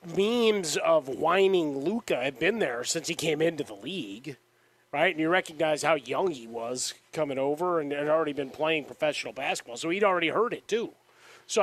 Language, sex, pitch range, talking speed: English, male, 135-185 Hz, 190 wpm